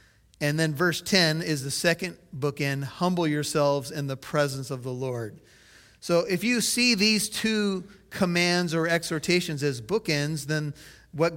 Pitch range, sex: 150-180 Hz, male